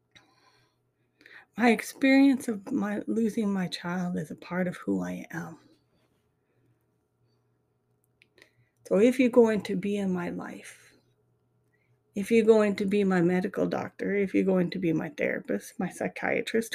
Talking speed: 145 wpm